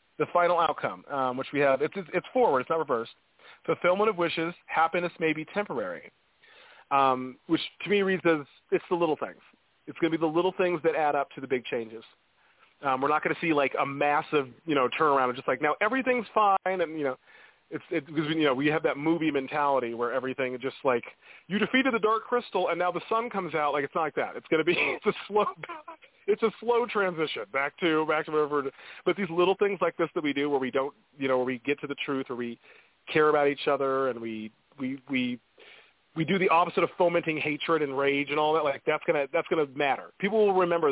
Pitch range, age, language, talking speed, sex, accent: 140-180 Hz, 30-49, English, 235 wpm, male, American